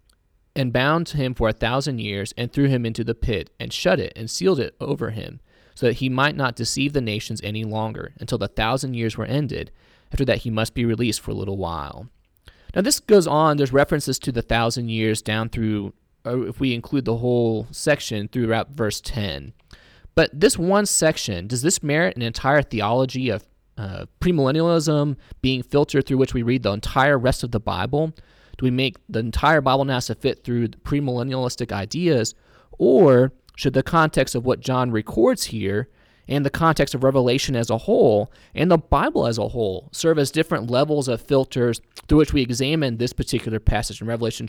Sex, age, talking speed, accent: male, 20-39, 190 wpm, American